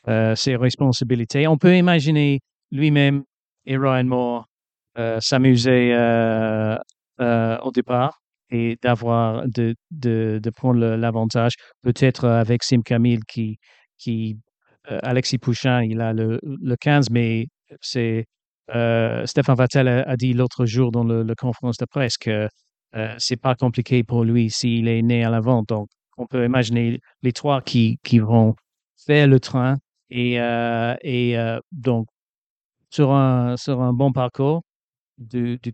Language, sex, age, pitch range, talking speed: French, male, 50-69, 115-135 Hz, 150 wpm